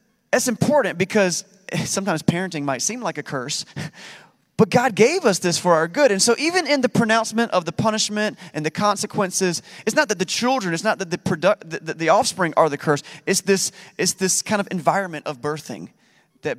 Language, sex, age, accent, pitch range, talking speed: English, male, 30-49, American, 160-205 Hz, 190 wpm